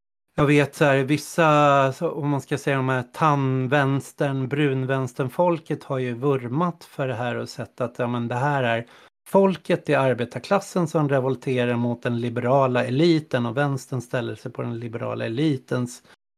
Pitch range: 130-160 Hz